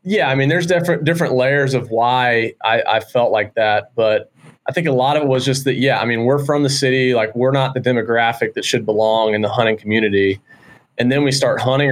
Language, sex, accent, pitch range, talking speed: English, male, American, 115-140 Hz, 240 wpm